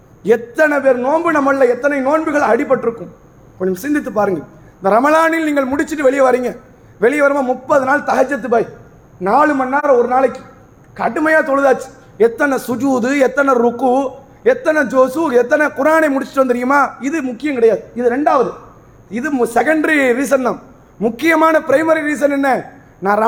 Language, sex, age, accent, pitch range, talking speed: English, male, 30-49, Indian, 245-310 Hz, 130 wpm